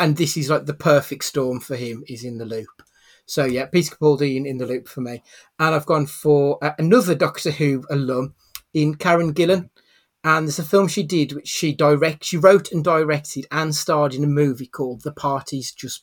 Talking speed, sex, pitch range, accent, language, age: 205 wpm, male, 135-160 Hz, British, English, 30-49